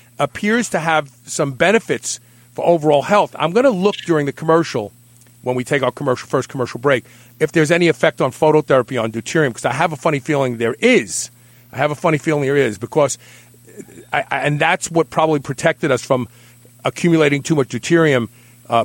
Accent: American